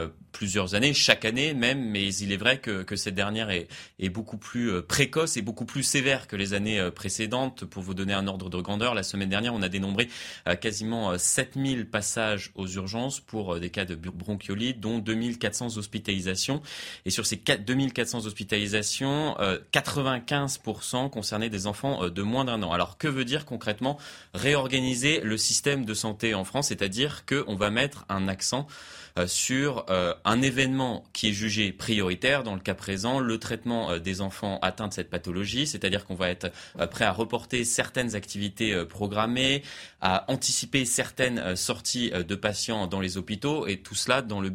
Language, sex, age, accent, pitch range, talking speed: French, male, 30-49, French, 100-125 Hz, 180 wpm